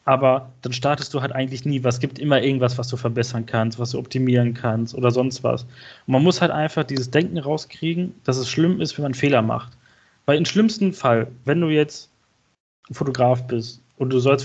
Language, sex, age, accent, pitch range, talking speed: German, male, 20-39, German, 120-145 Hz, 210 wpm